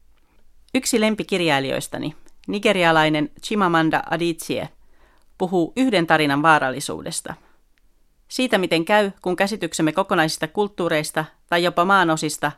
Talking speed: 90 wpm